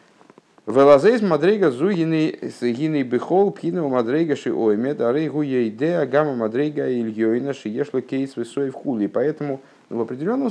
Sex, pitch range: male, 110-150 Hz